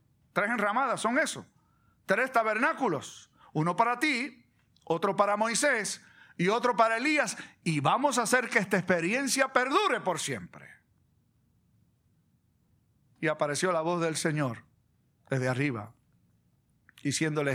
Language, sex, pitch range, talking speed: Spanish, male, 150-245 Hz, 120 wpm